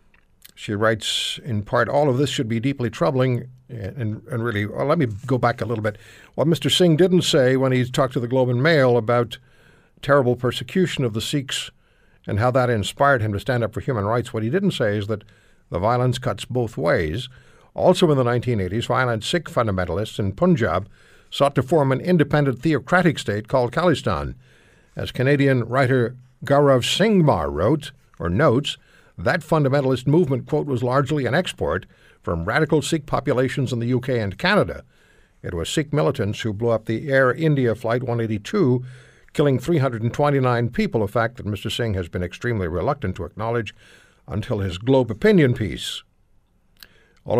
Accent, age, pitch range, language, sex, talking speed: American, 60-79, 110-140 Hz, English, male, 175 wpm